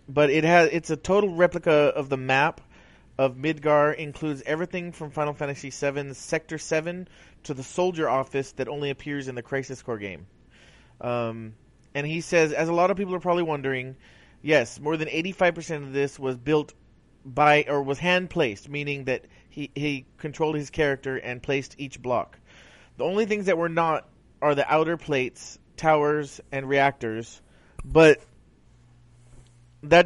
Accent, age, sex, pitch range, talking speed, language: American, 30-49, male, 135-165 Hz, 165 wpm, English